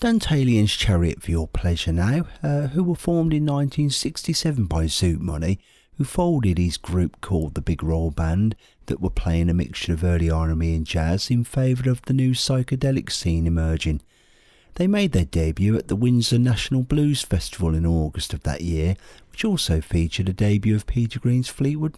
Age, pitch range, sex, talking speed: 50-69, 90-135 Hz, male, 180 wpm